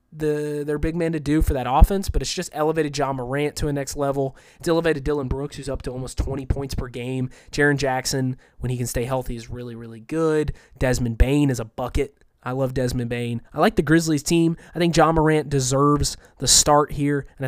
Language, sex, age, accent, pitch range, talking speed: English, male, 20-39, American, 130-155 Hz, 225 wpm